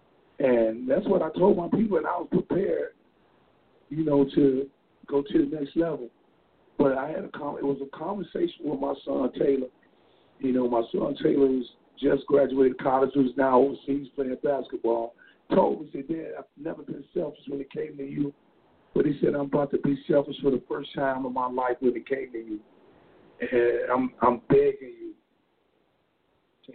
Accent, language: American, English